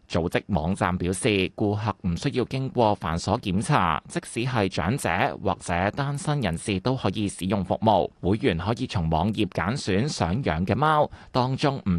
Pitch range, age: 95-130 Hz, 20-39